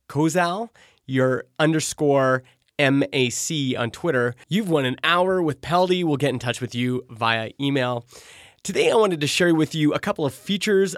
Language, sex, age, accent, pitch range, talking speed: English, male, 30-49, American, 130-175 Hz, 170 wpm